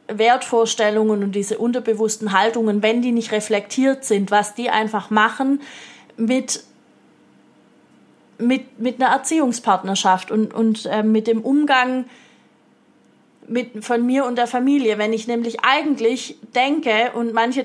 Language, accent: German, German